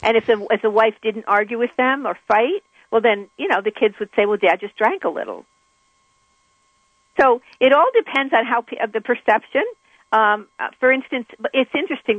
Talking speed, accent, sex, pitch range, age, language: 195 wpm, American, female, 195-245 Hz, 50-69, English